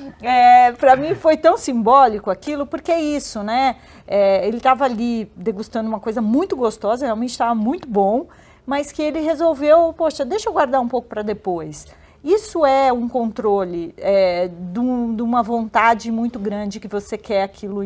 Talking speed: 170 wpm